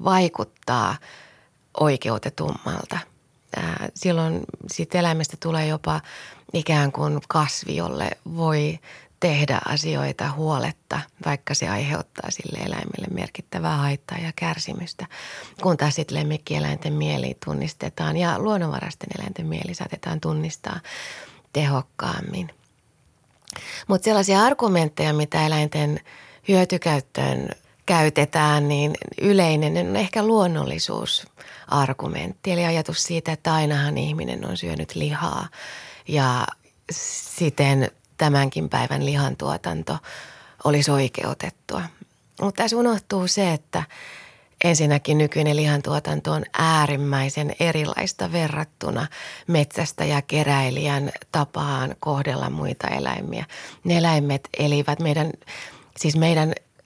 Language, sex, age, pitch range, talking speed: Finnish, female, 30-49, 145-175 Hz, 95 wpm